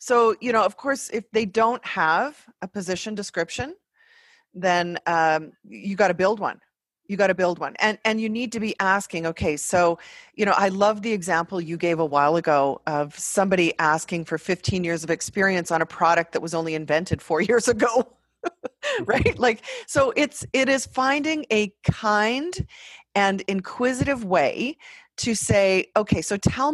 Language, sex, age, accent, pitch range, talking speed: English, female, 30-49, American, 170-230 Hz, 175 wpm